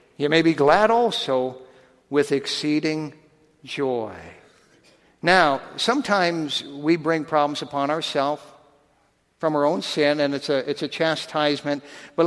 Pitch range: 140-175 Hz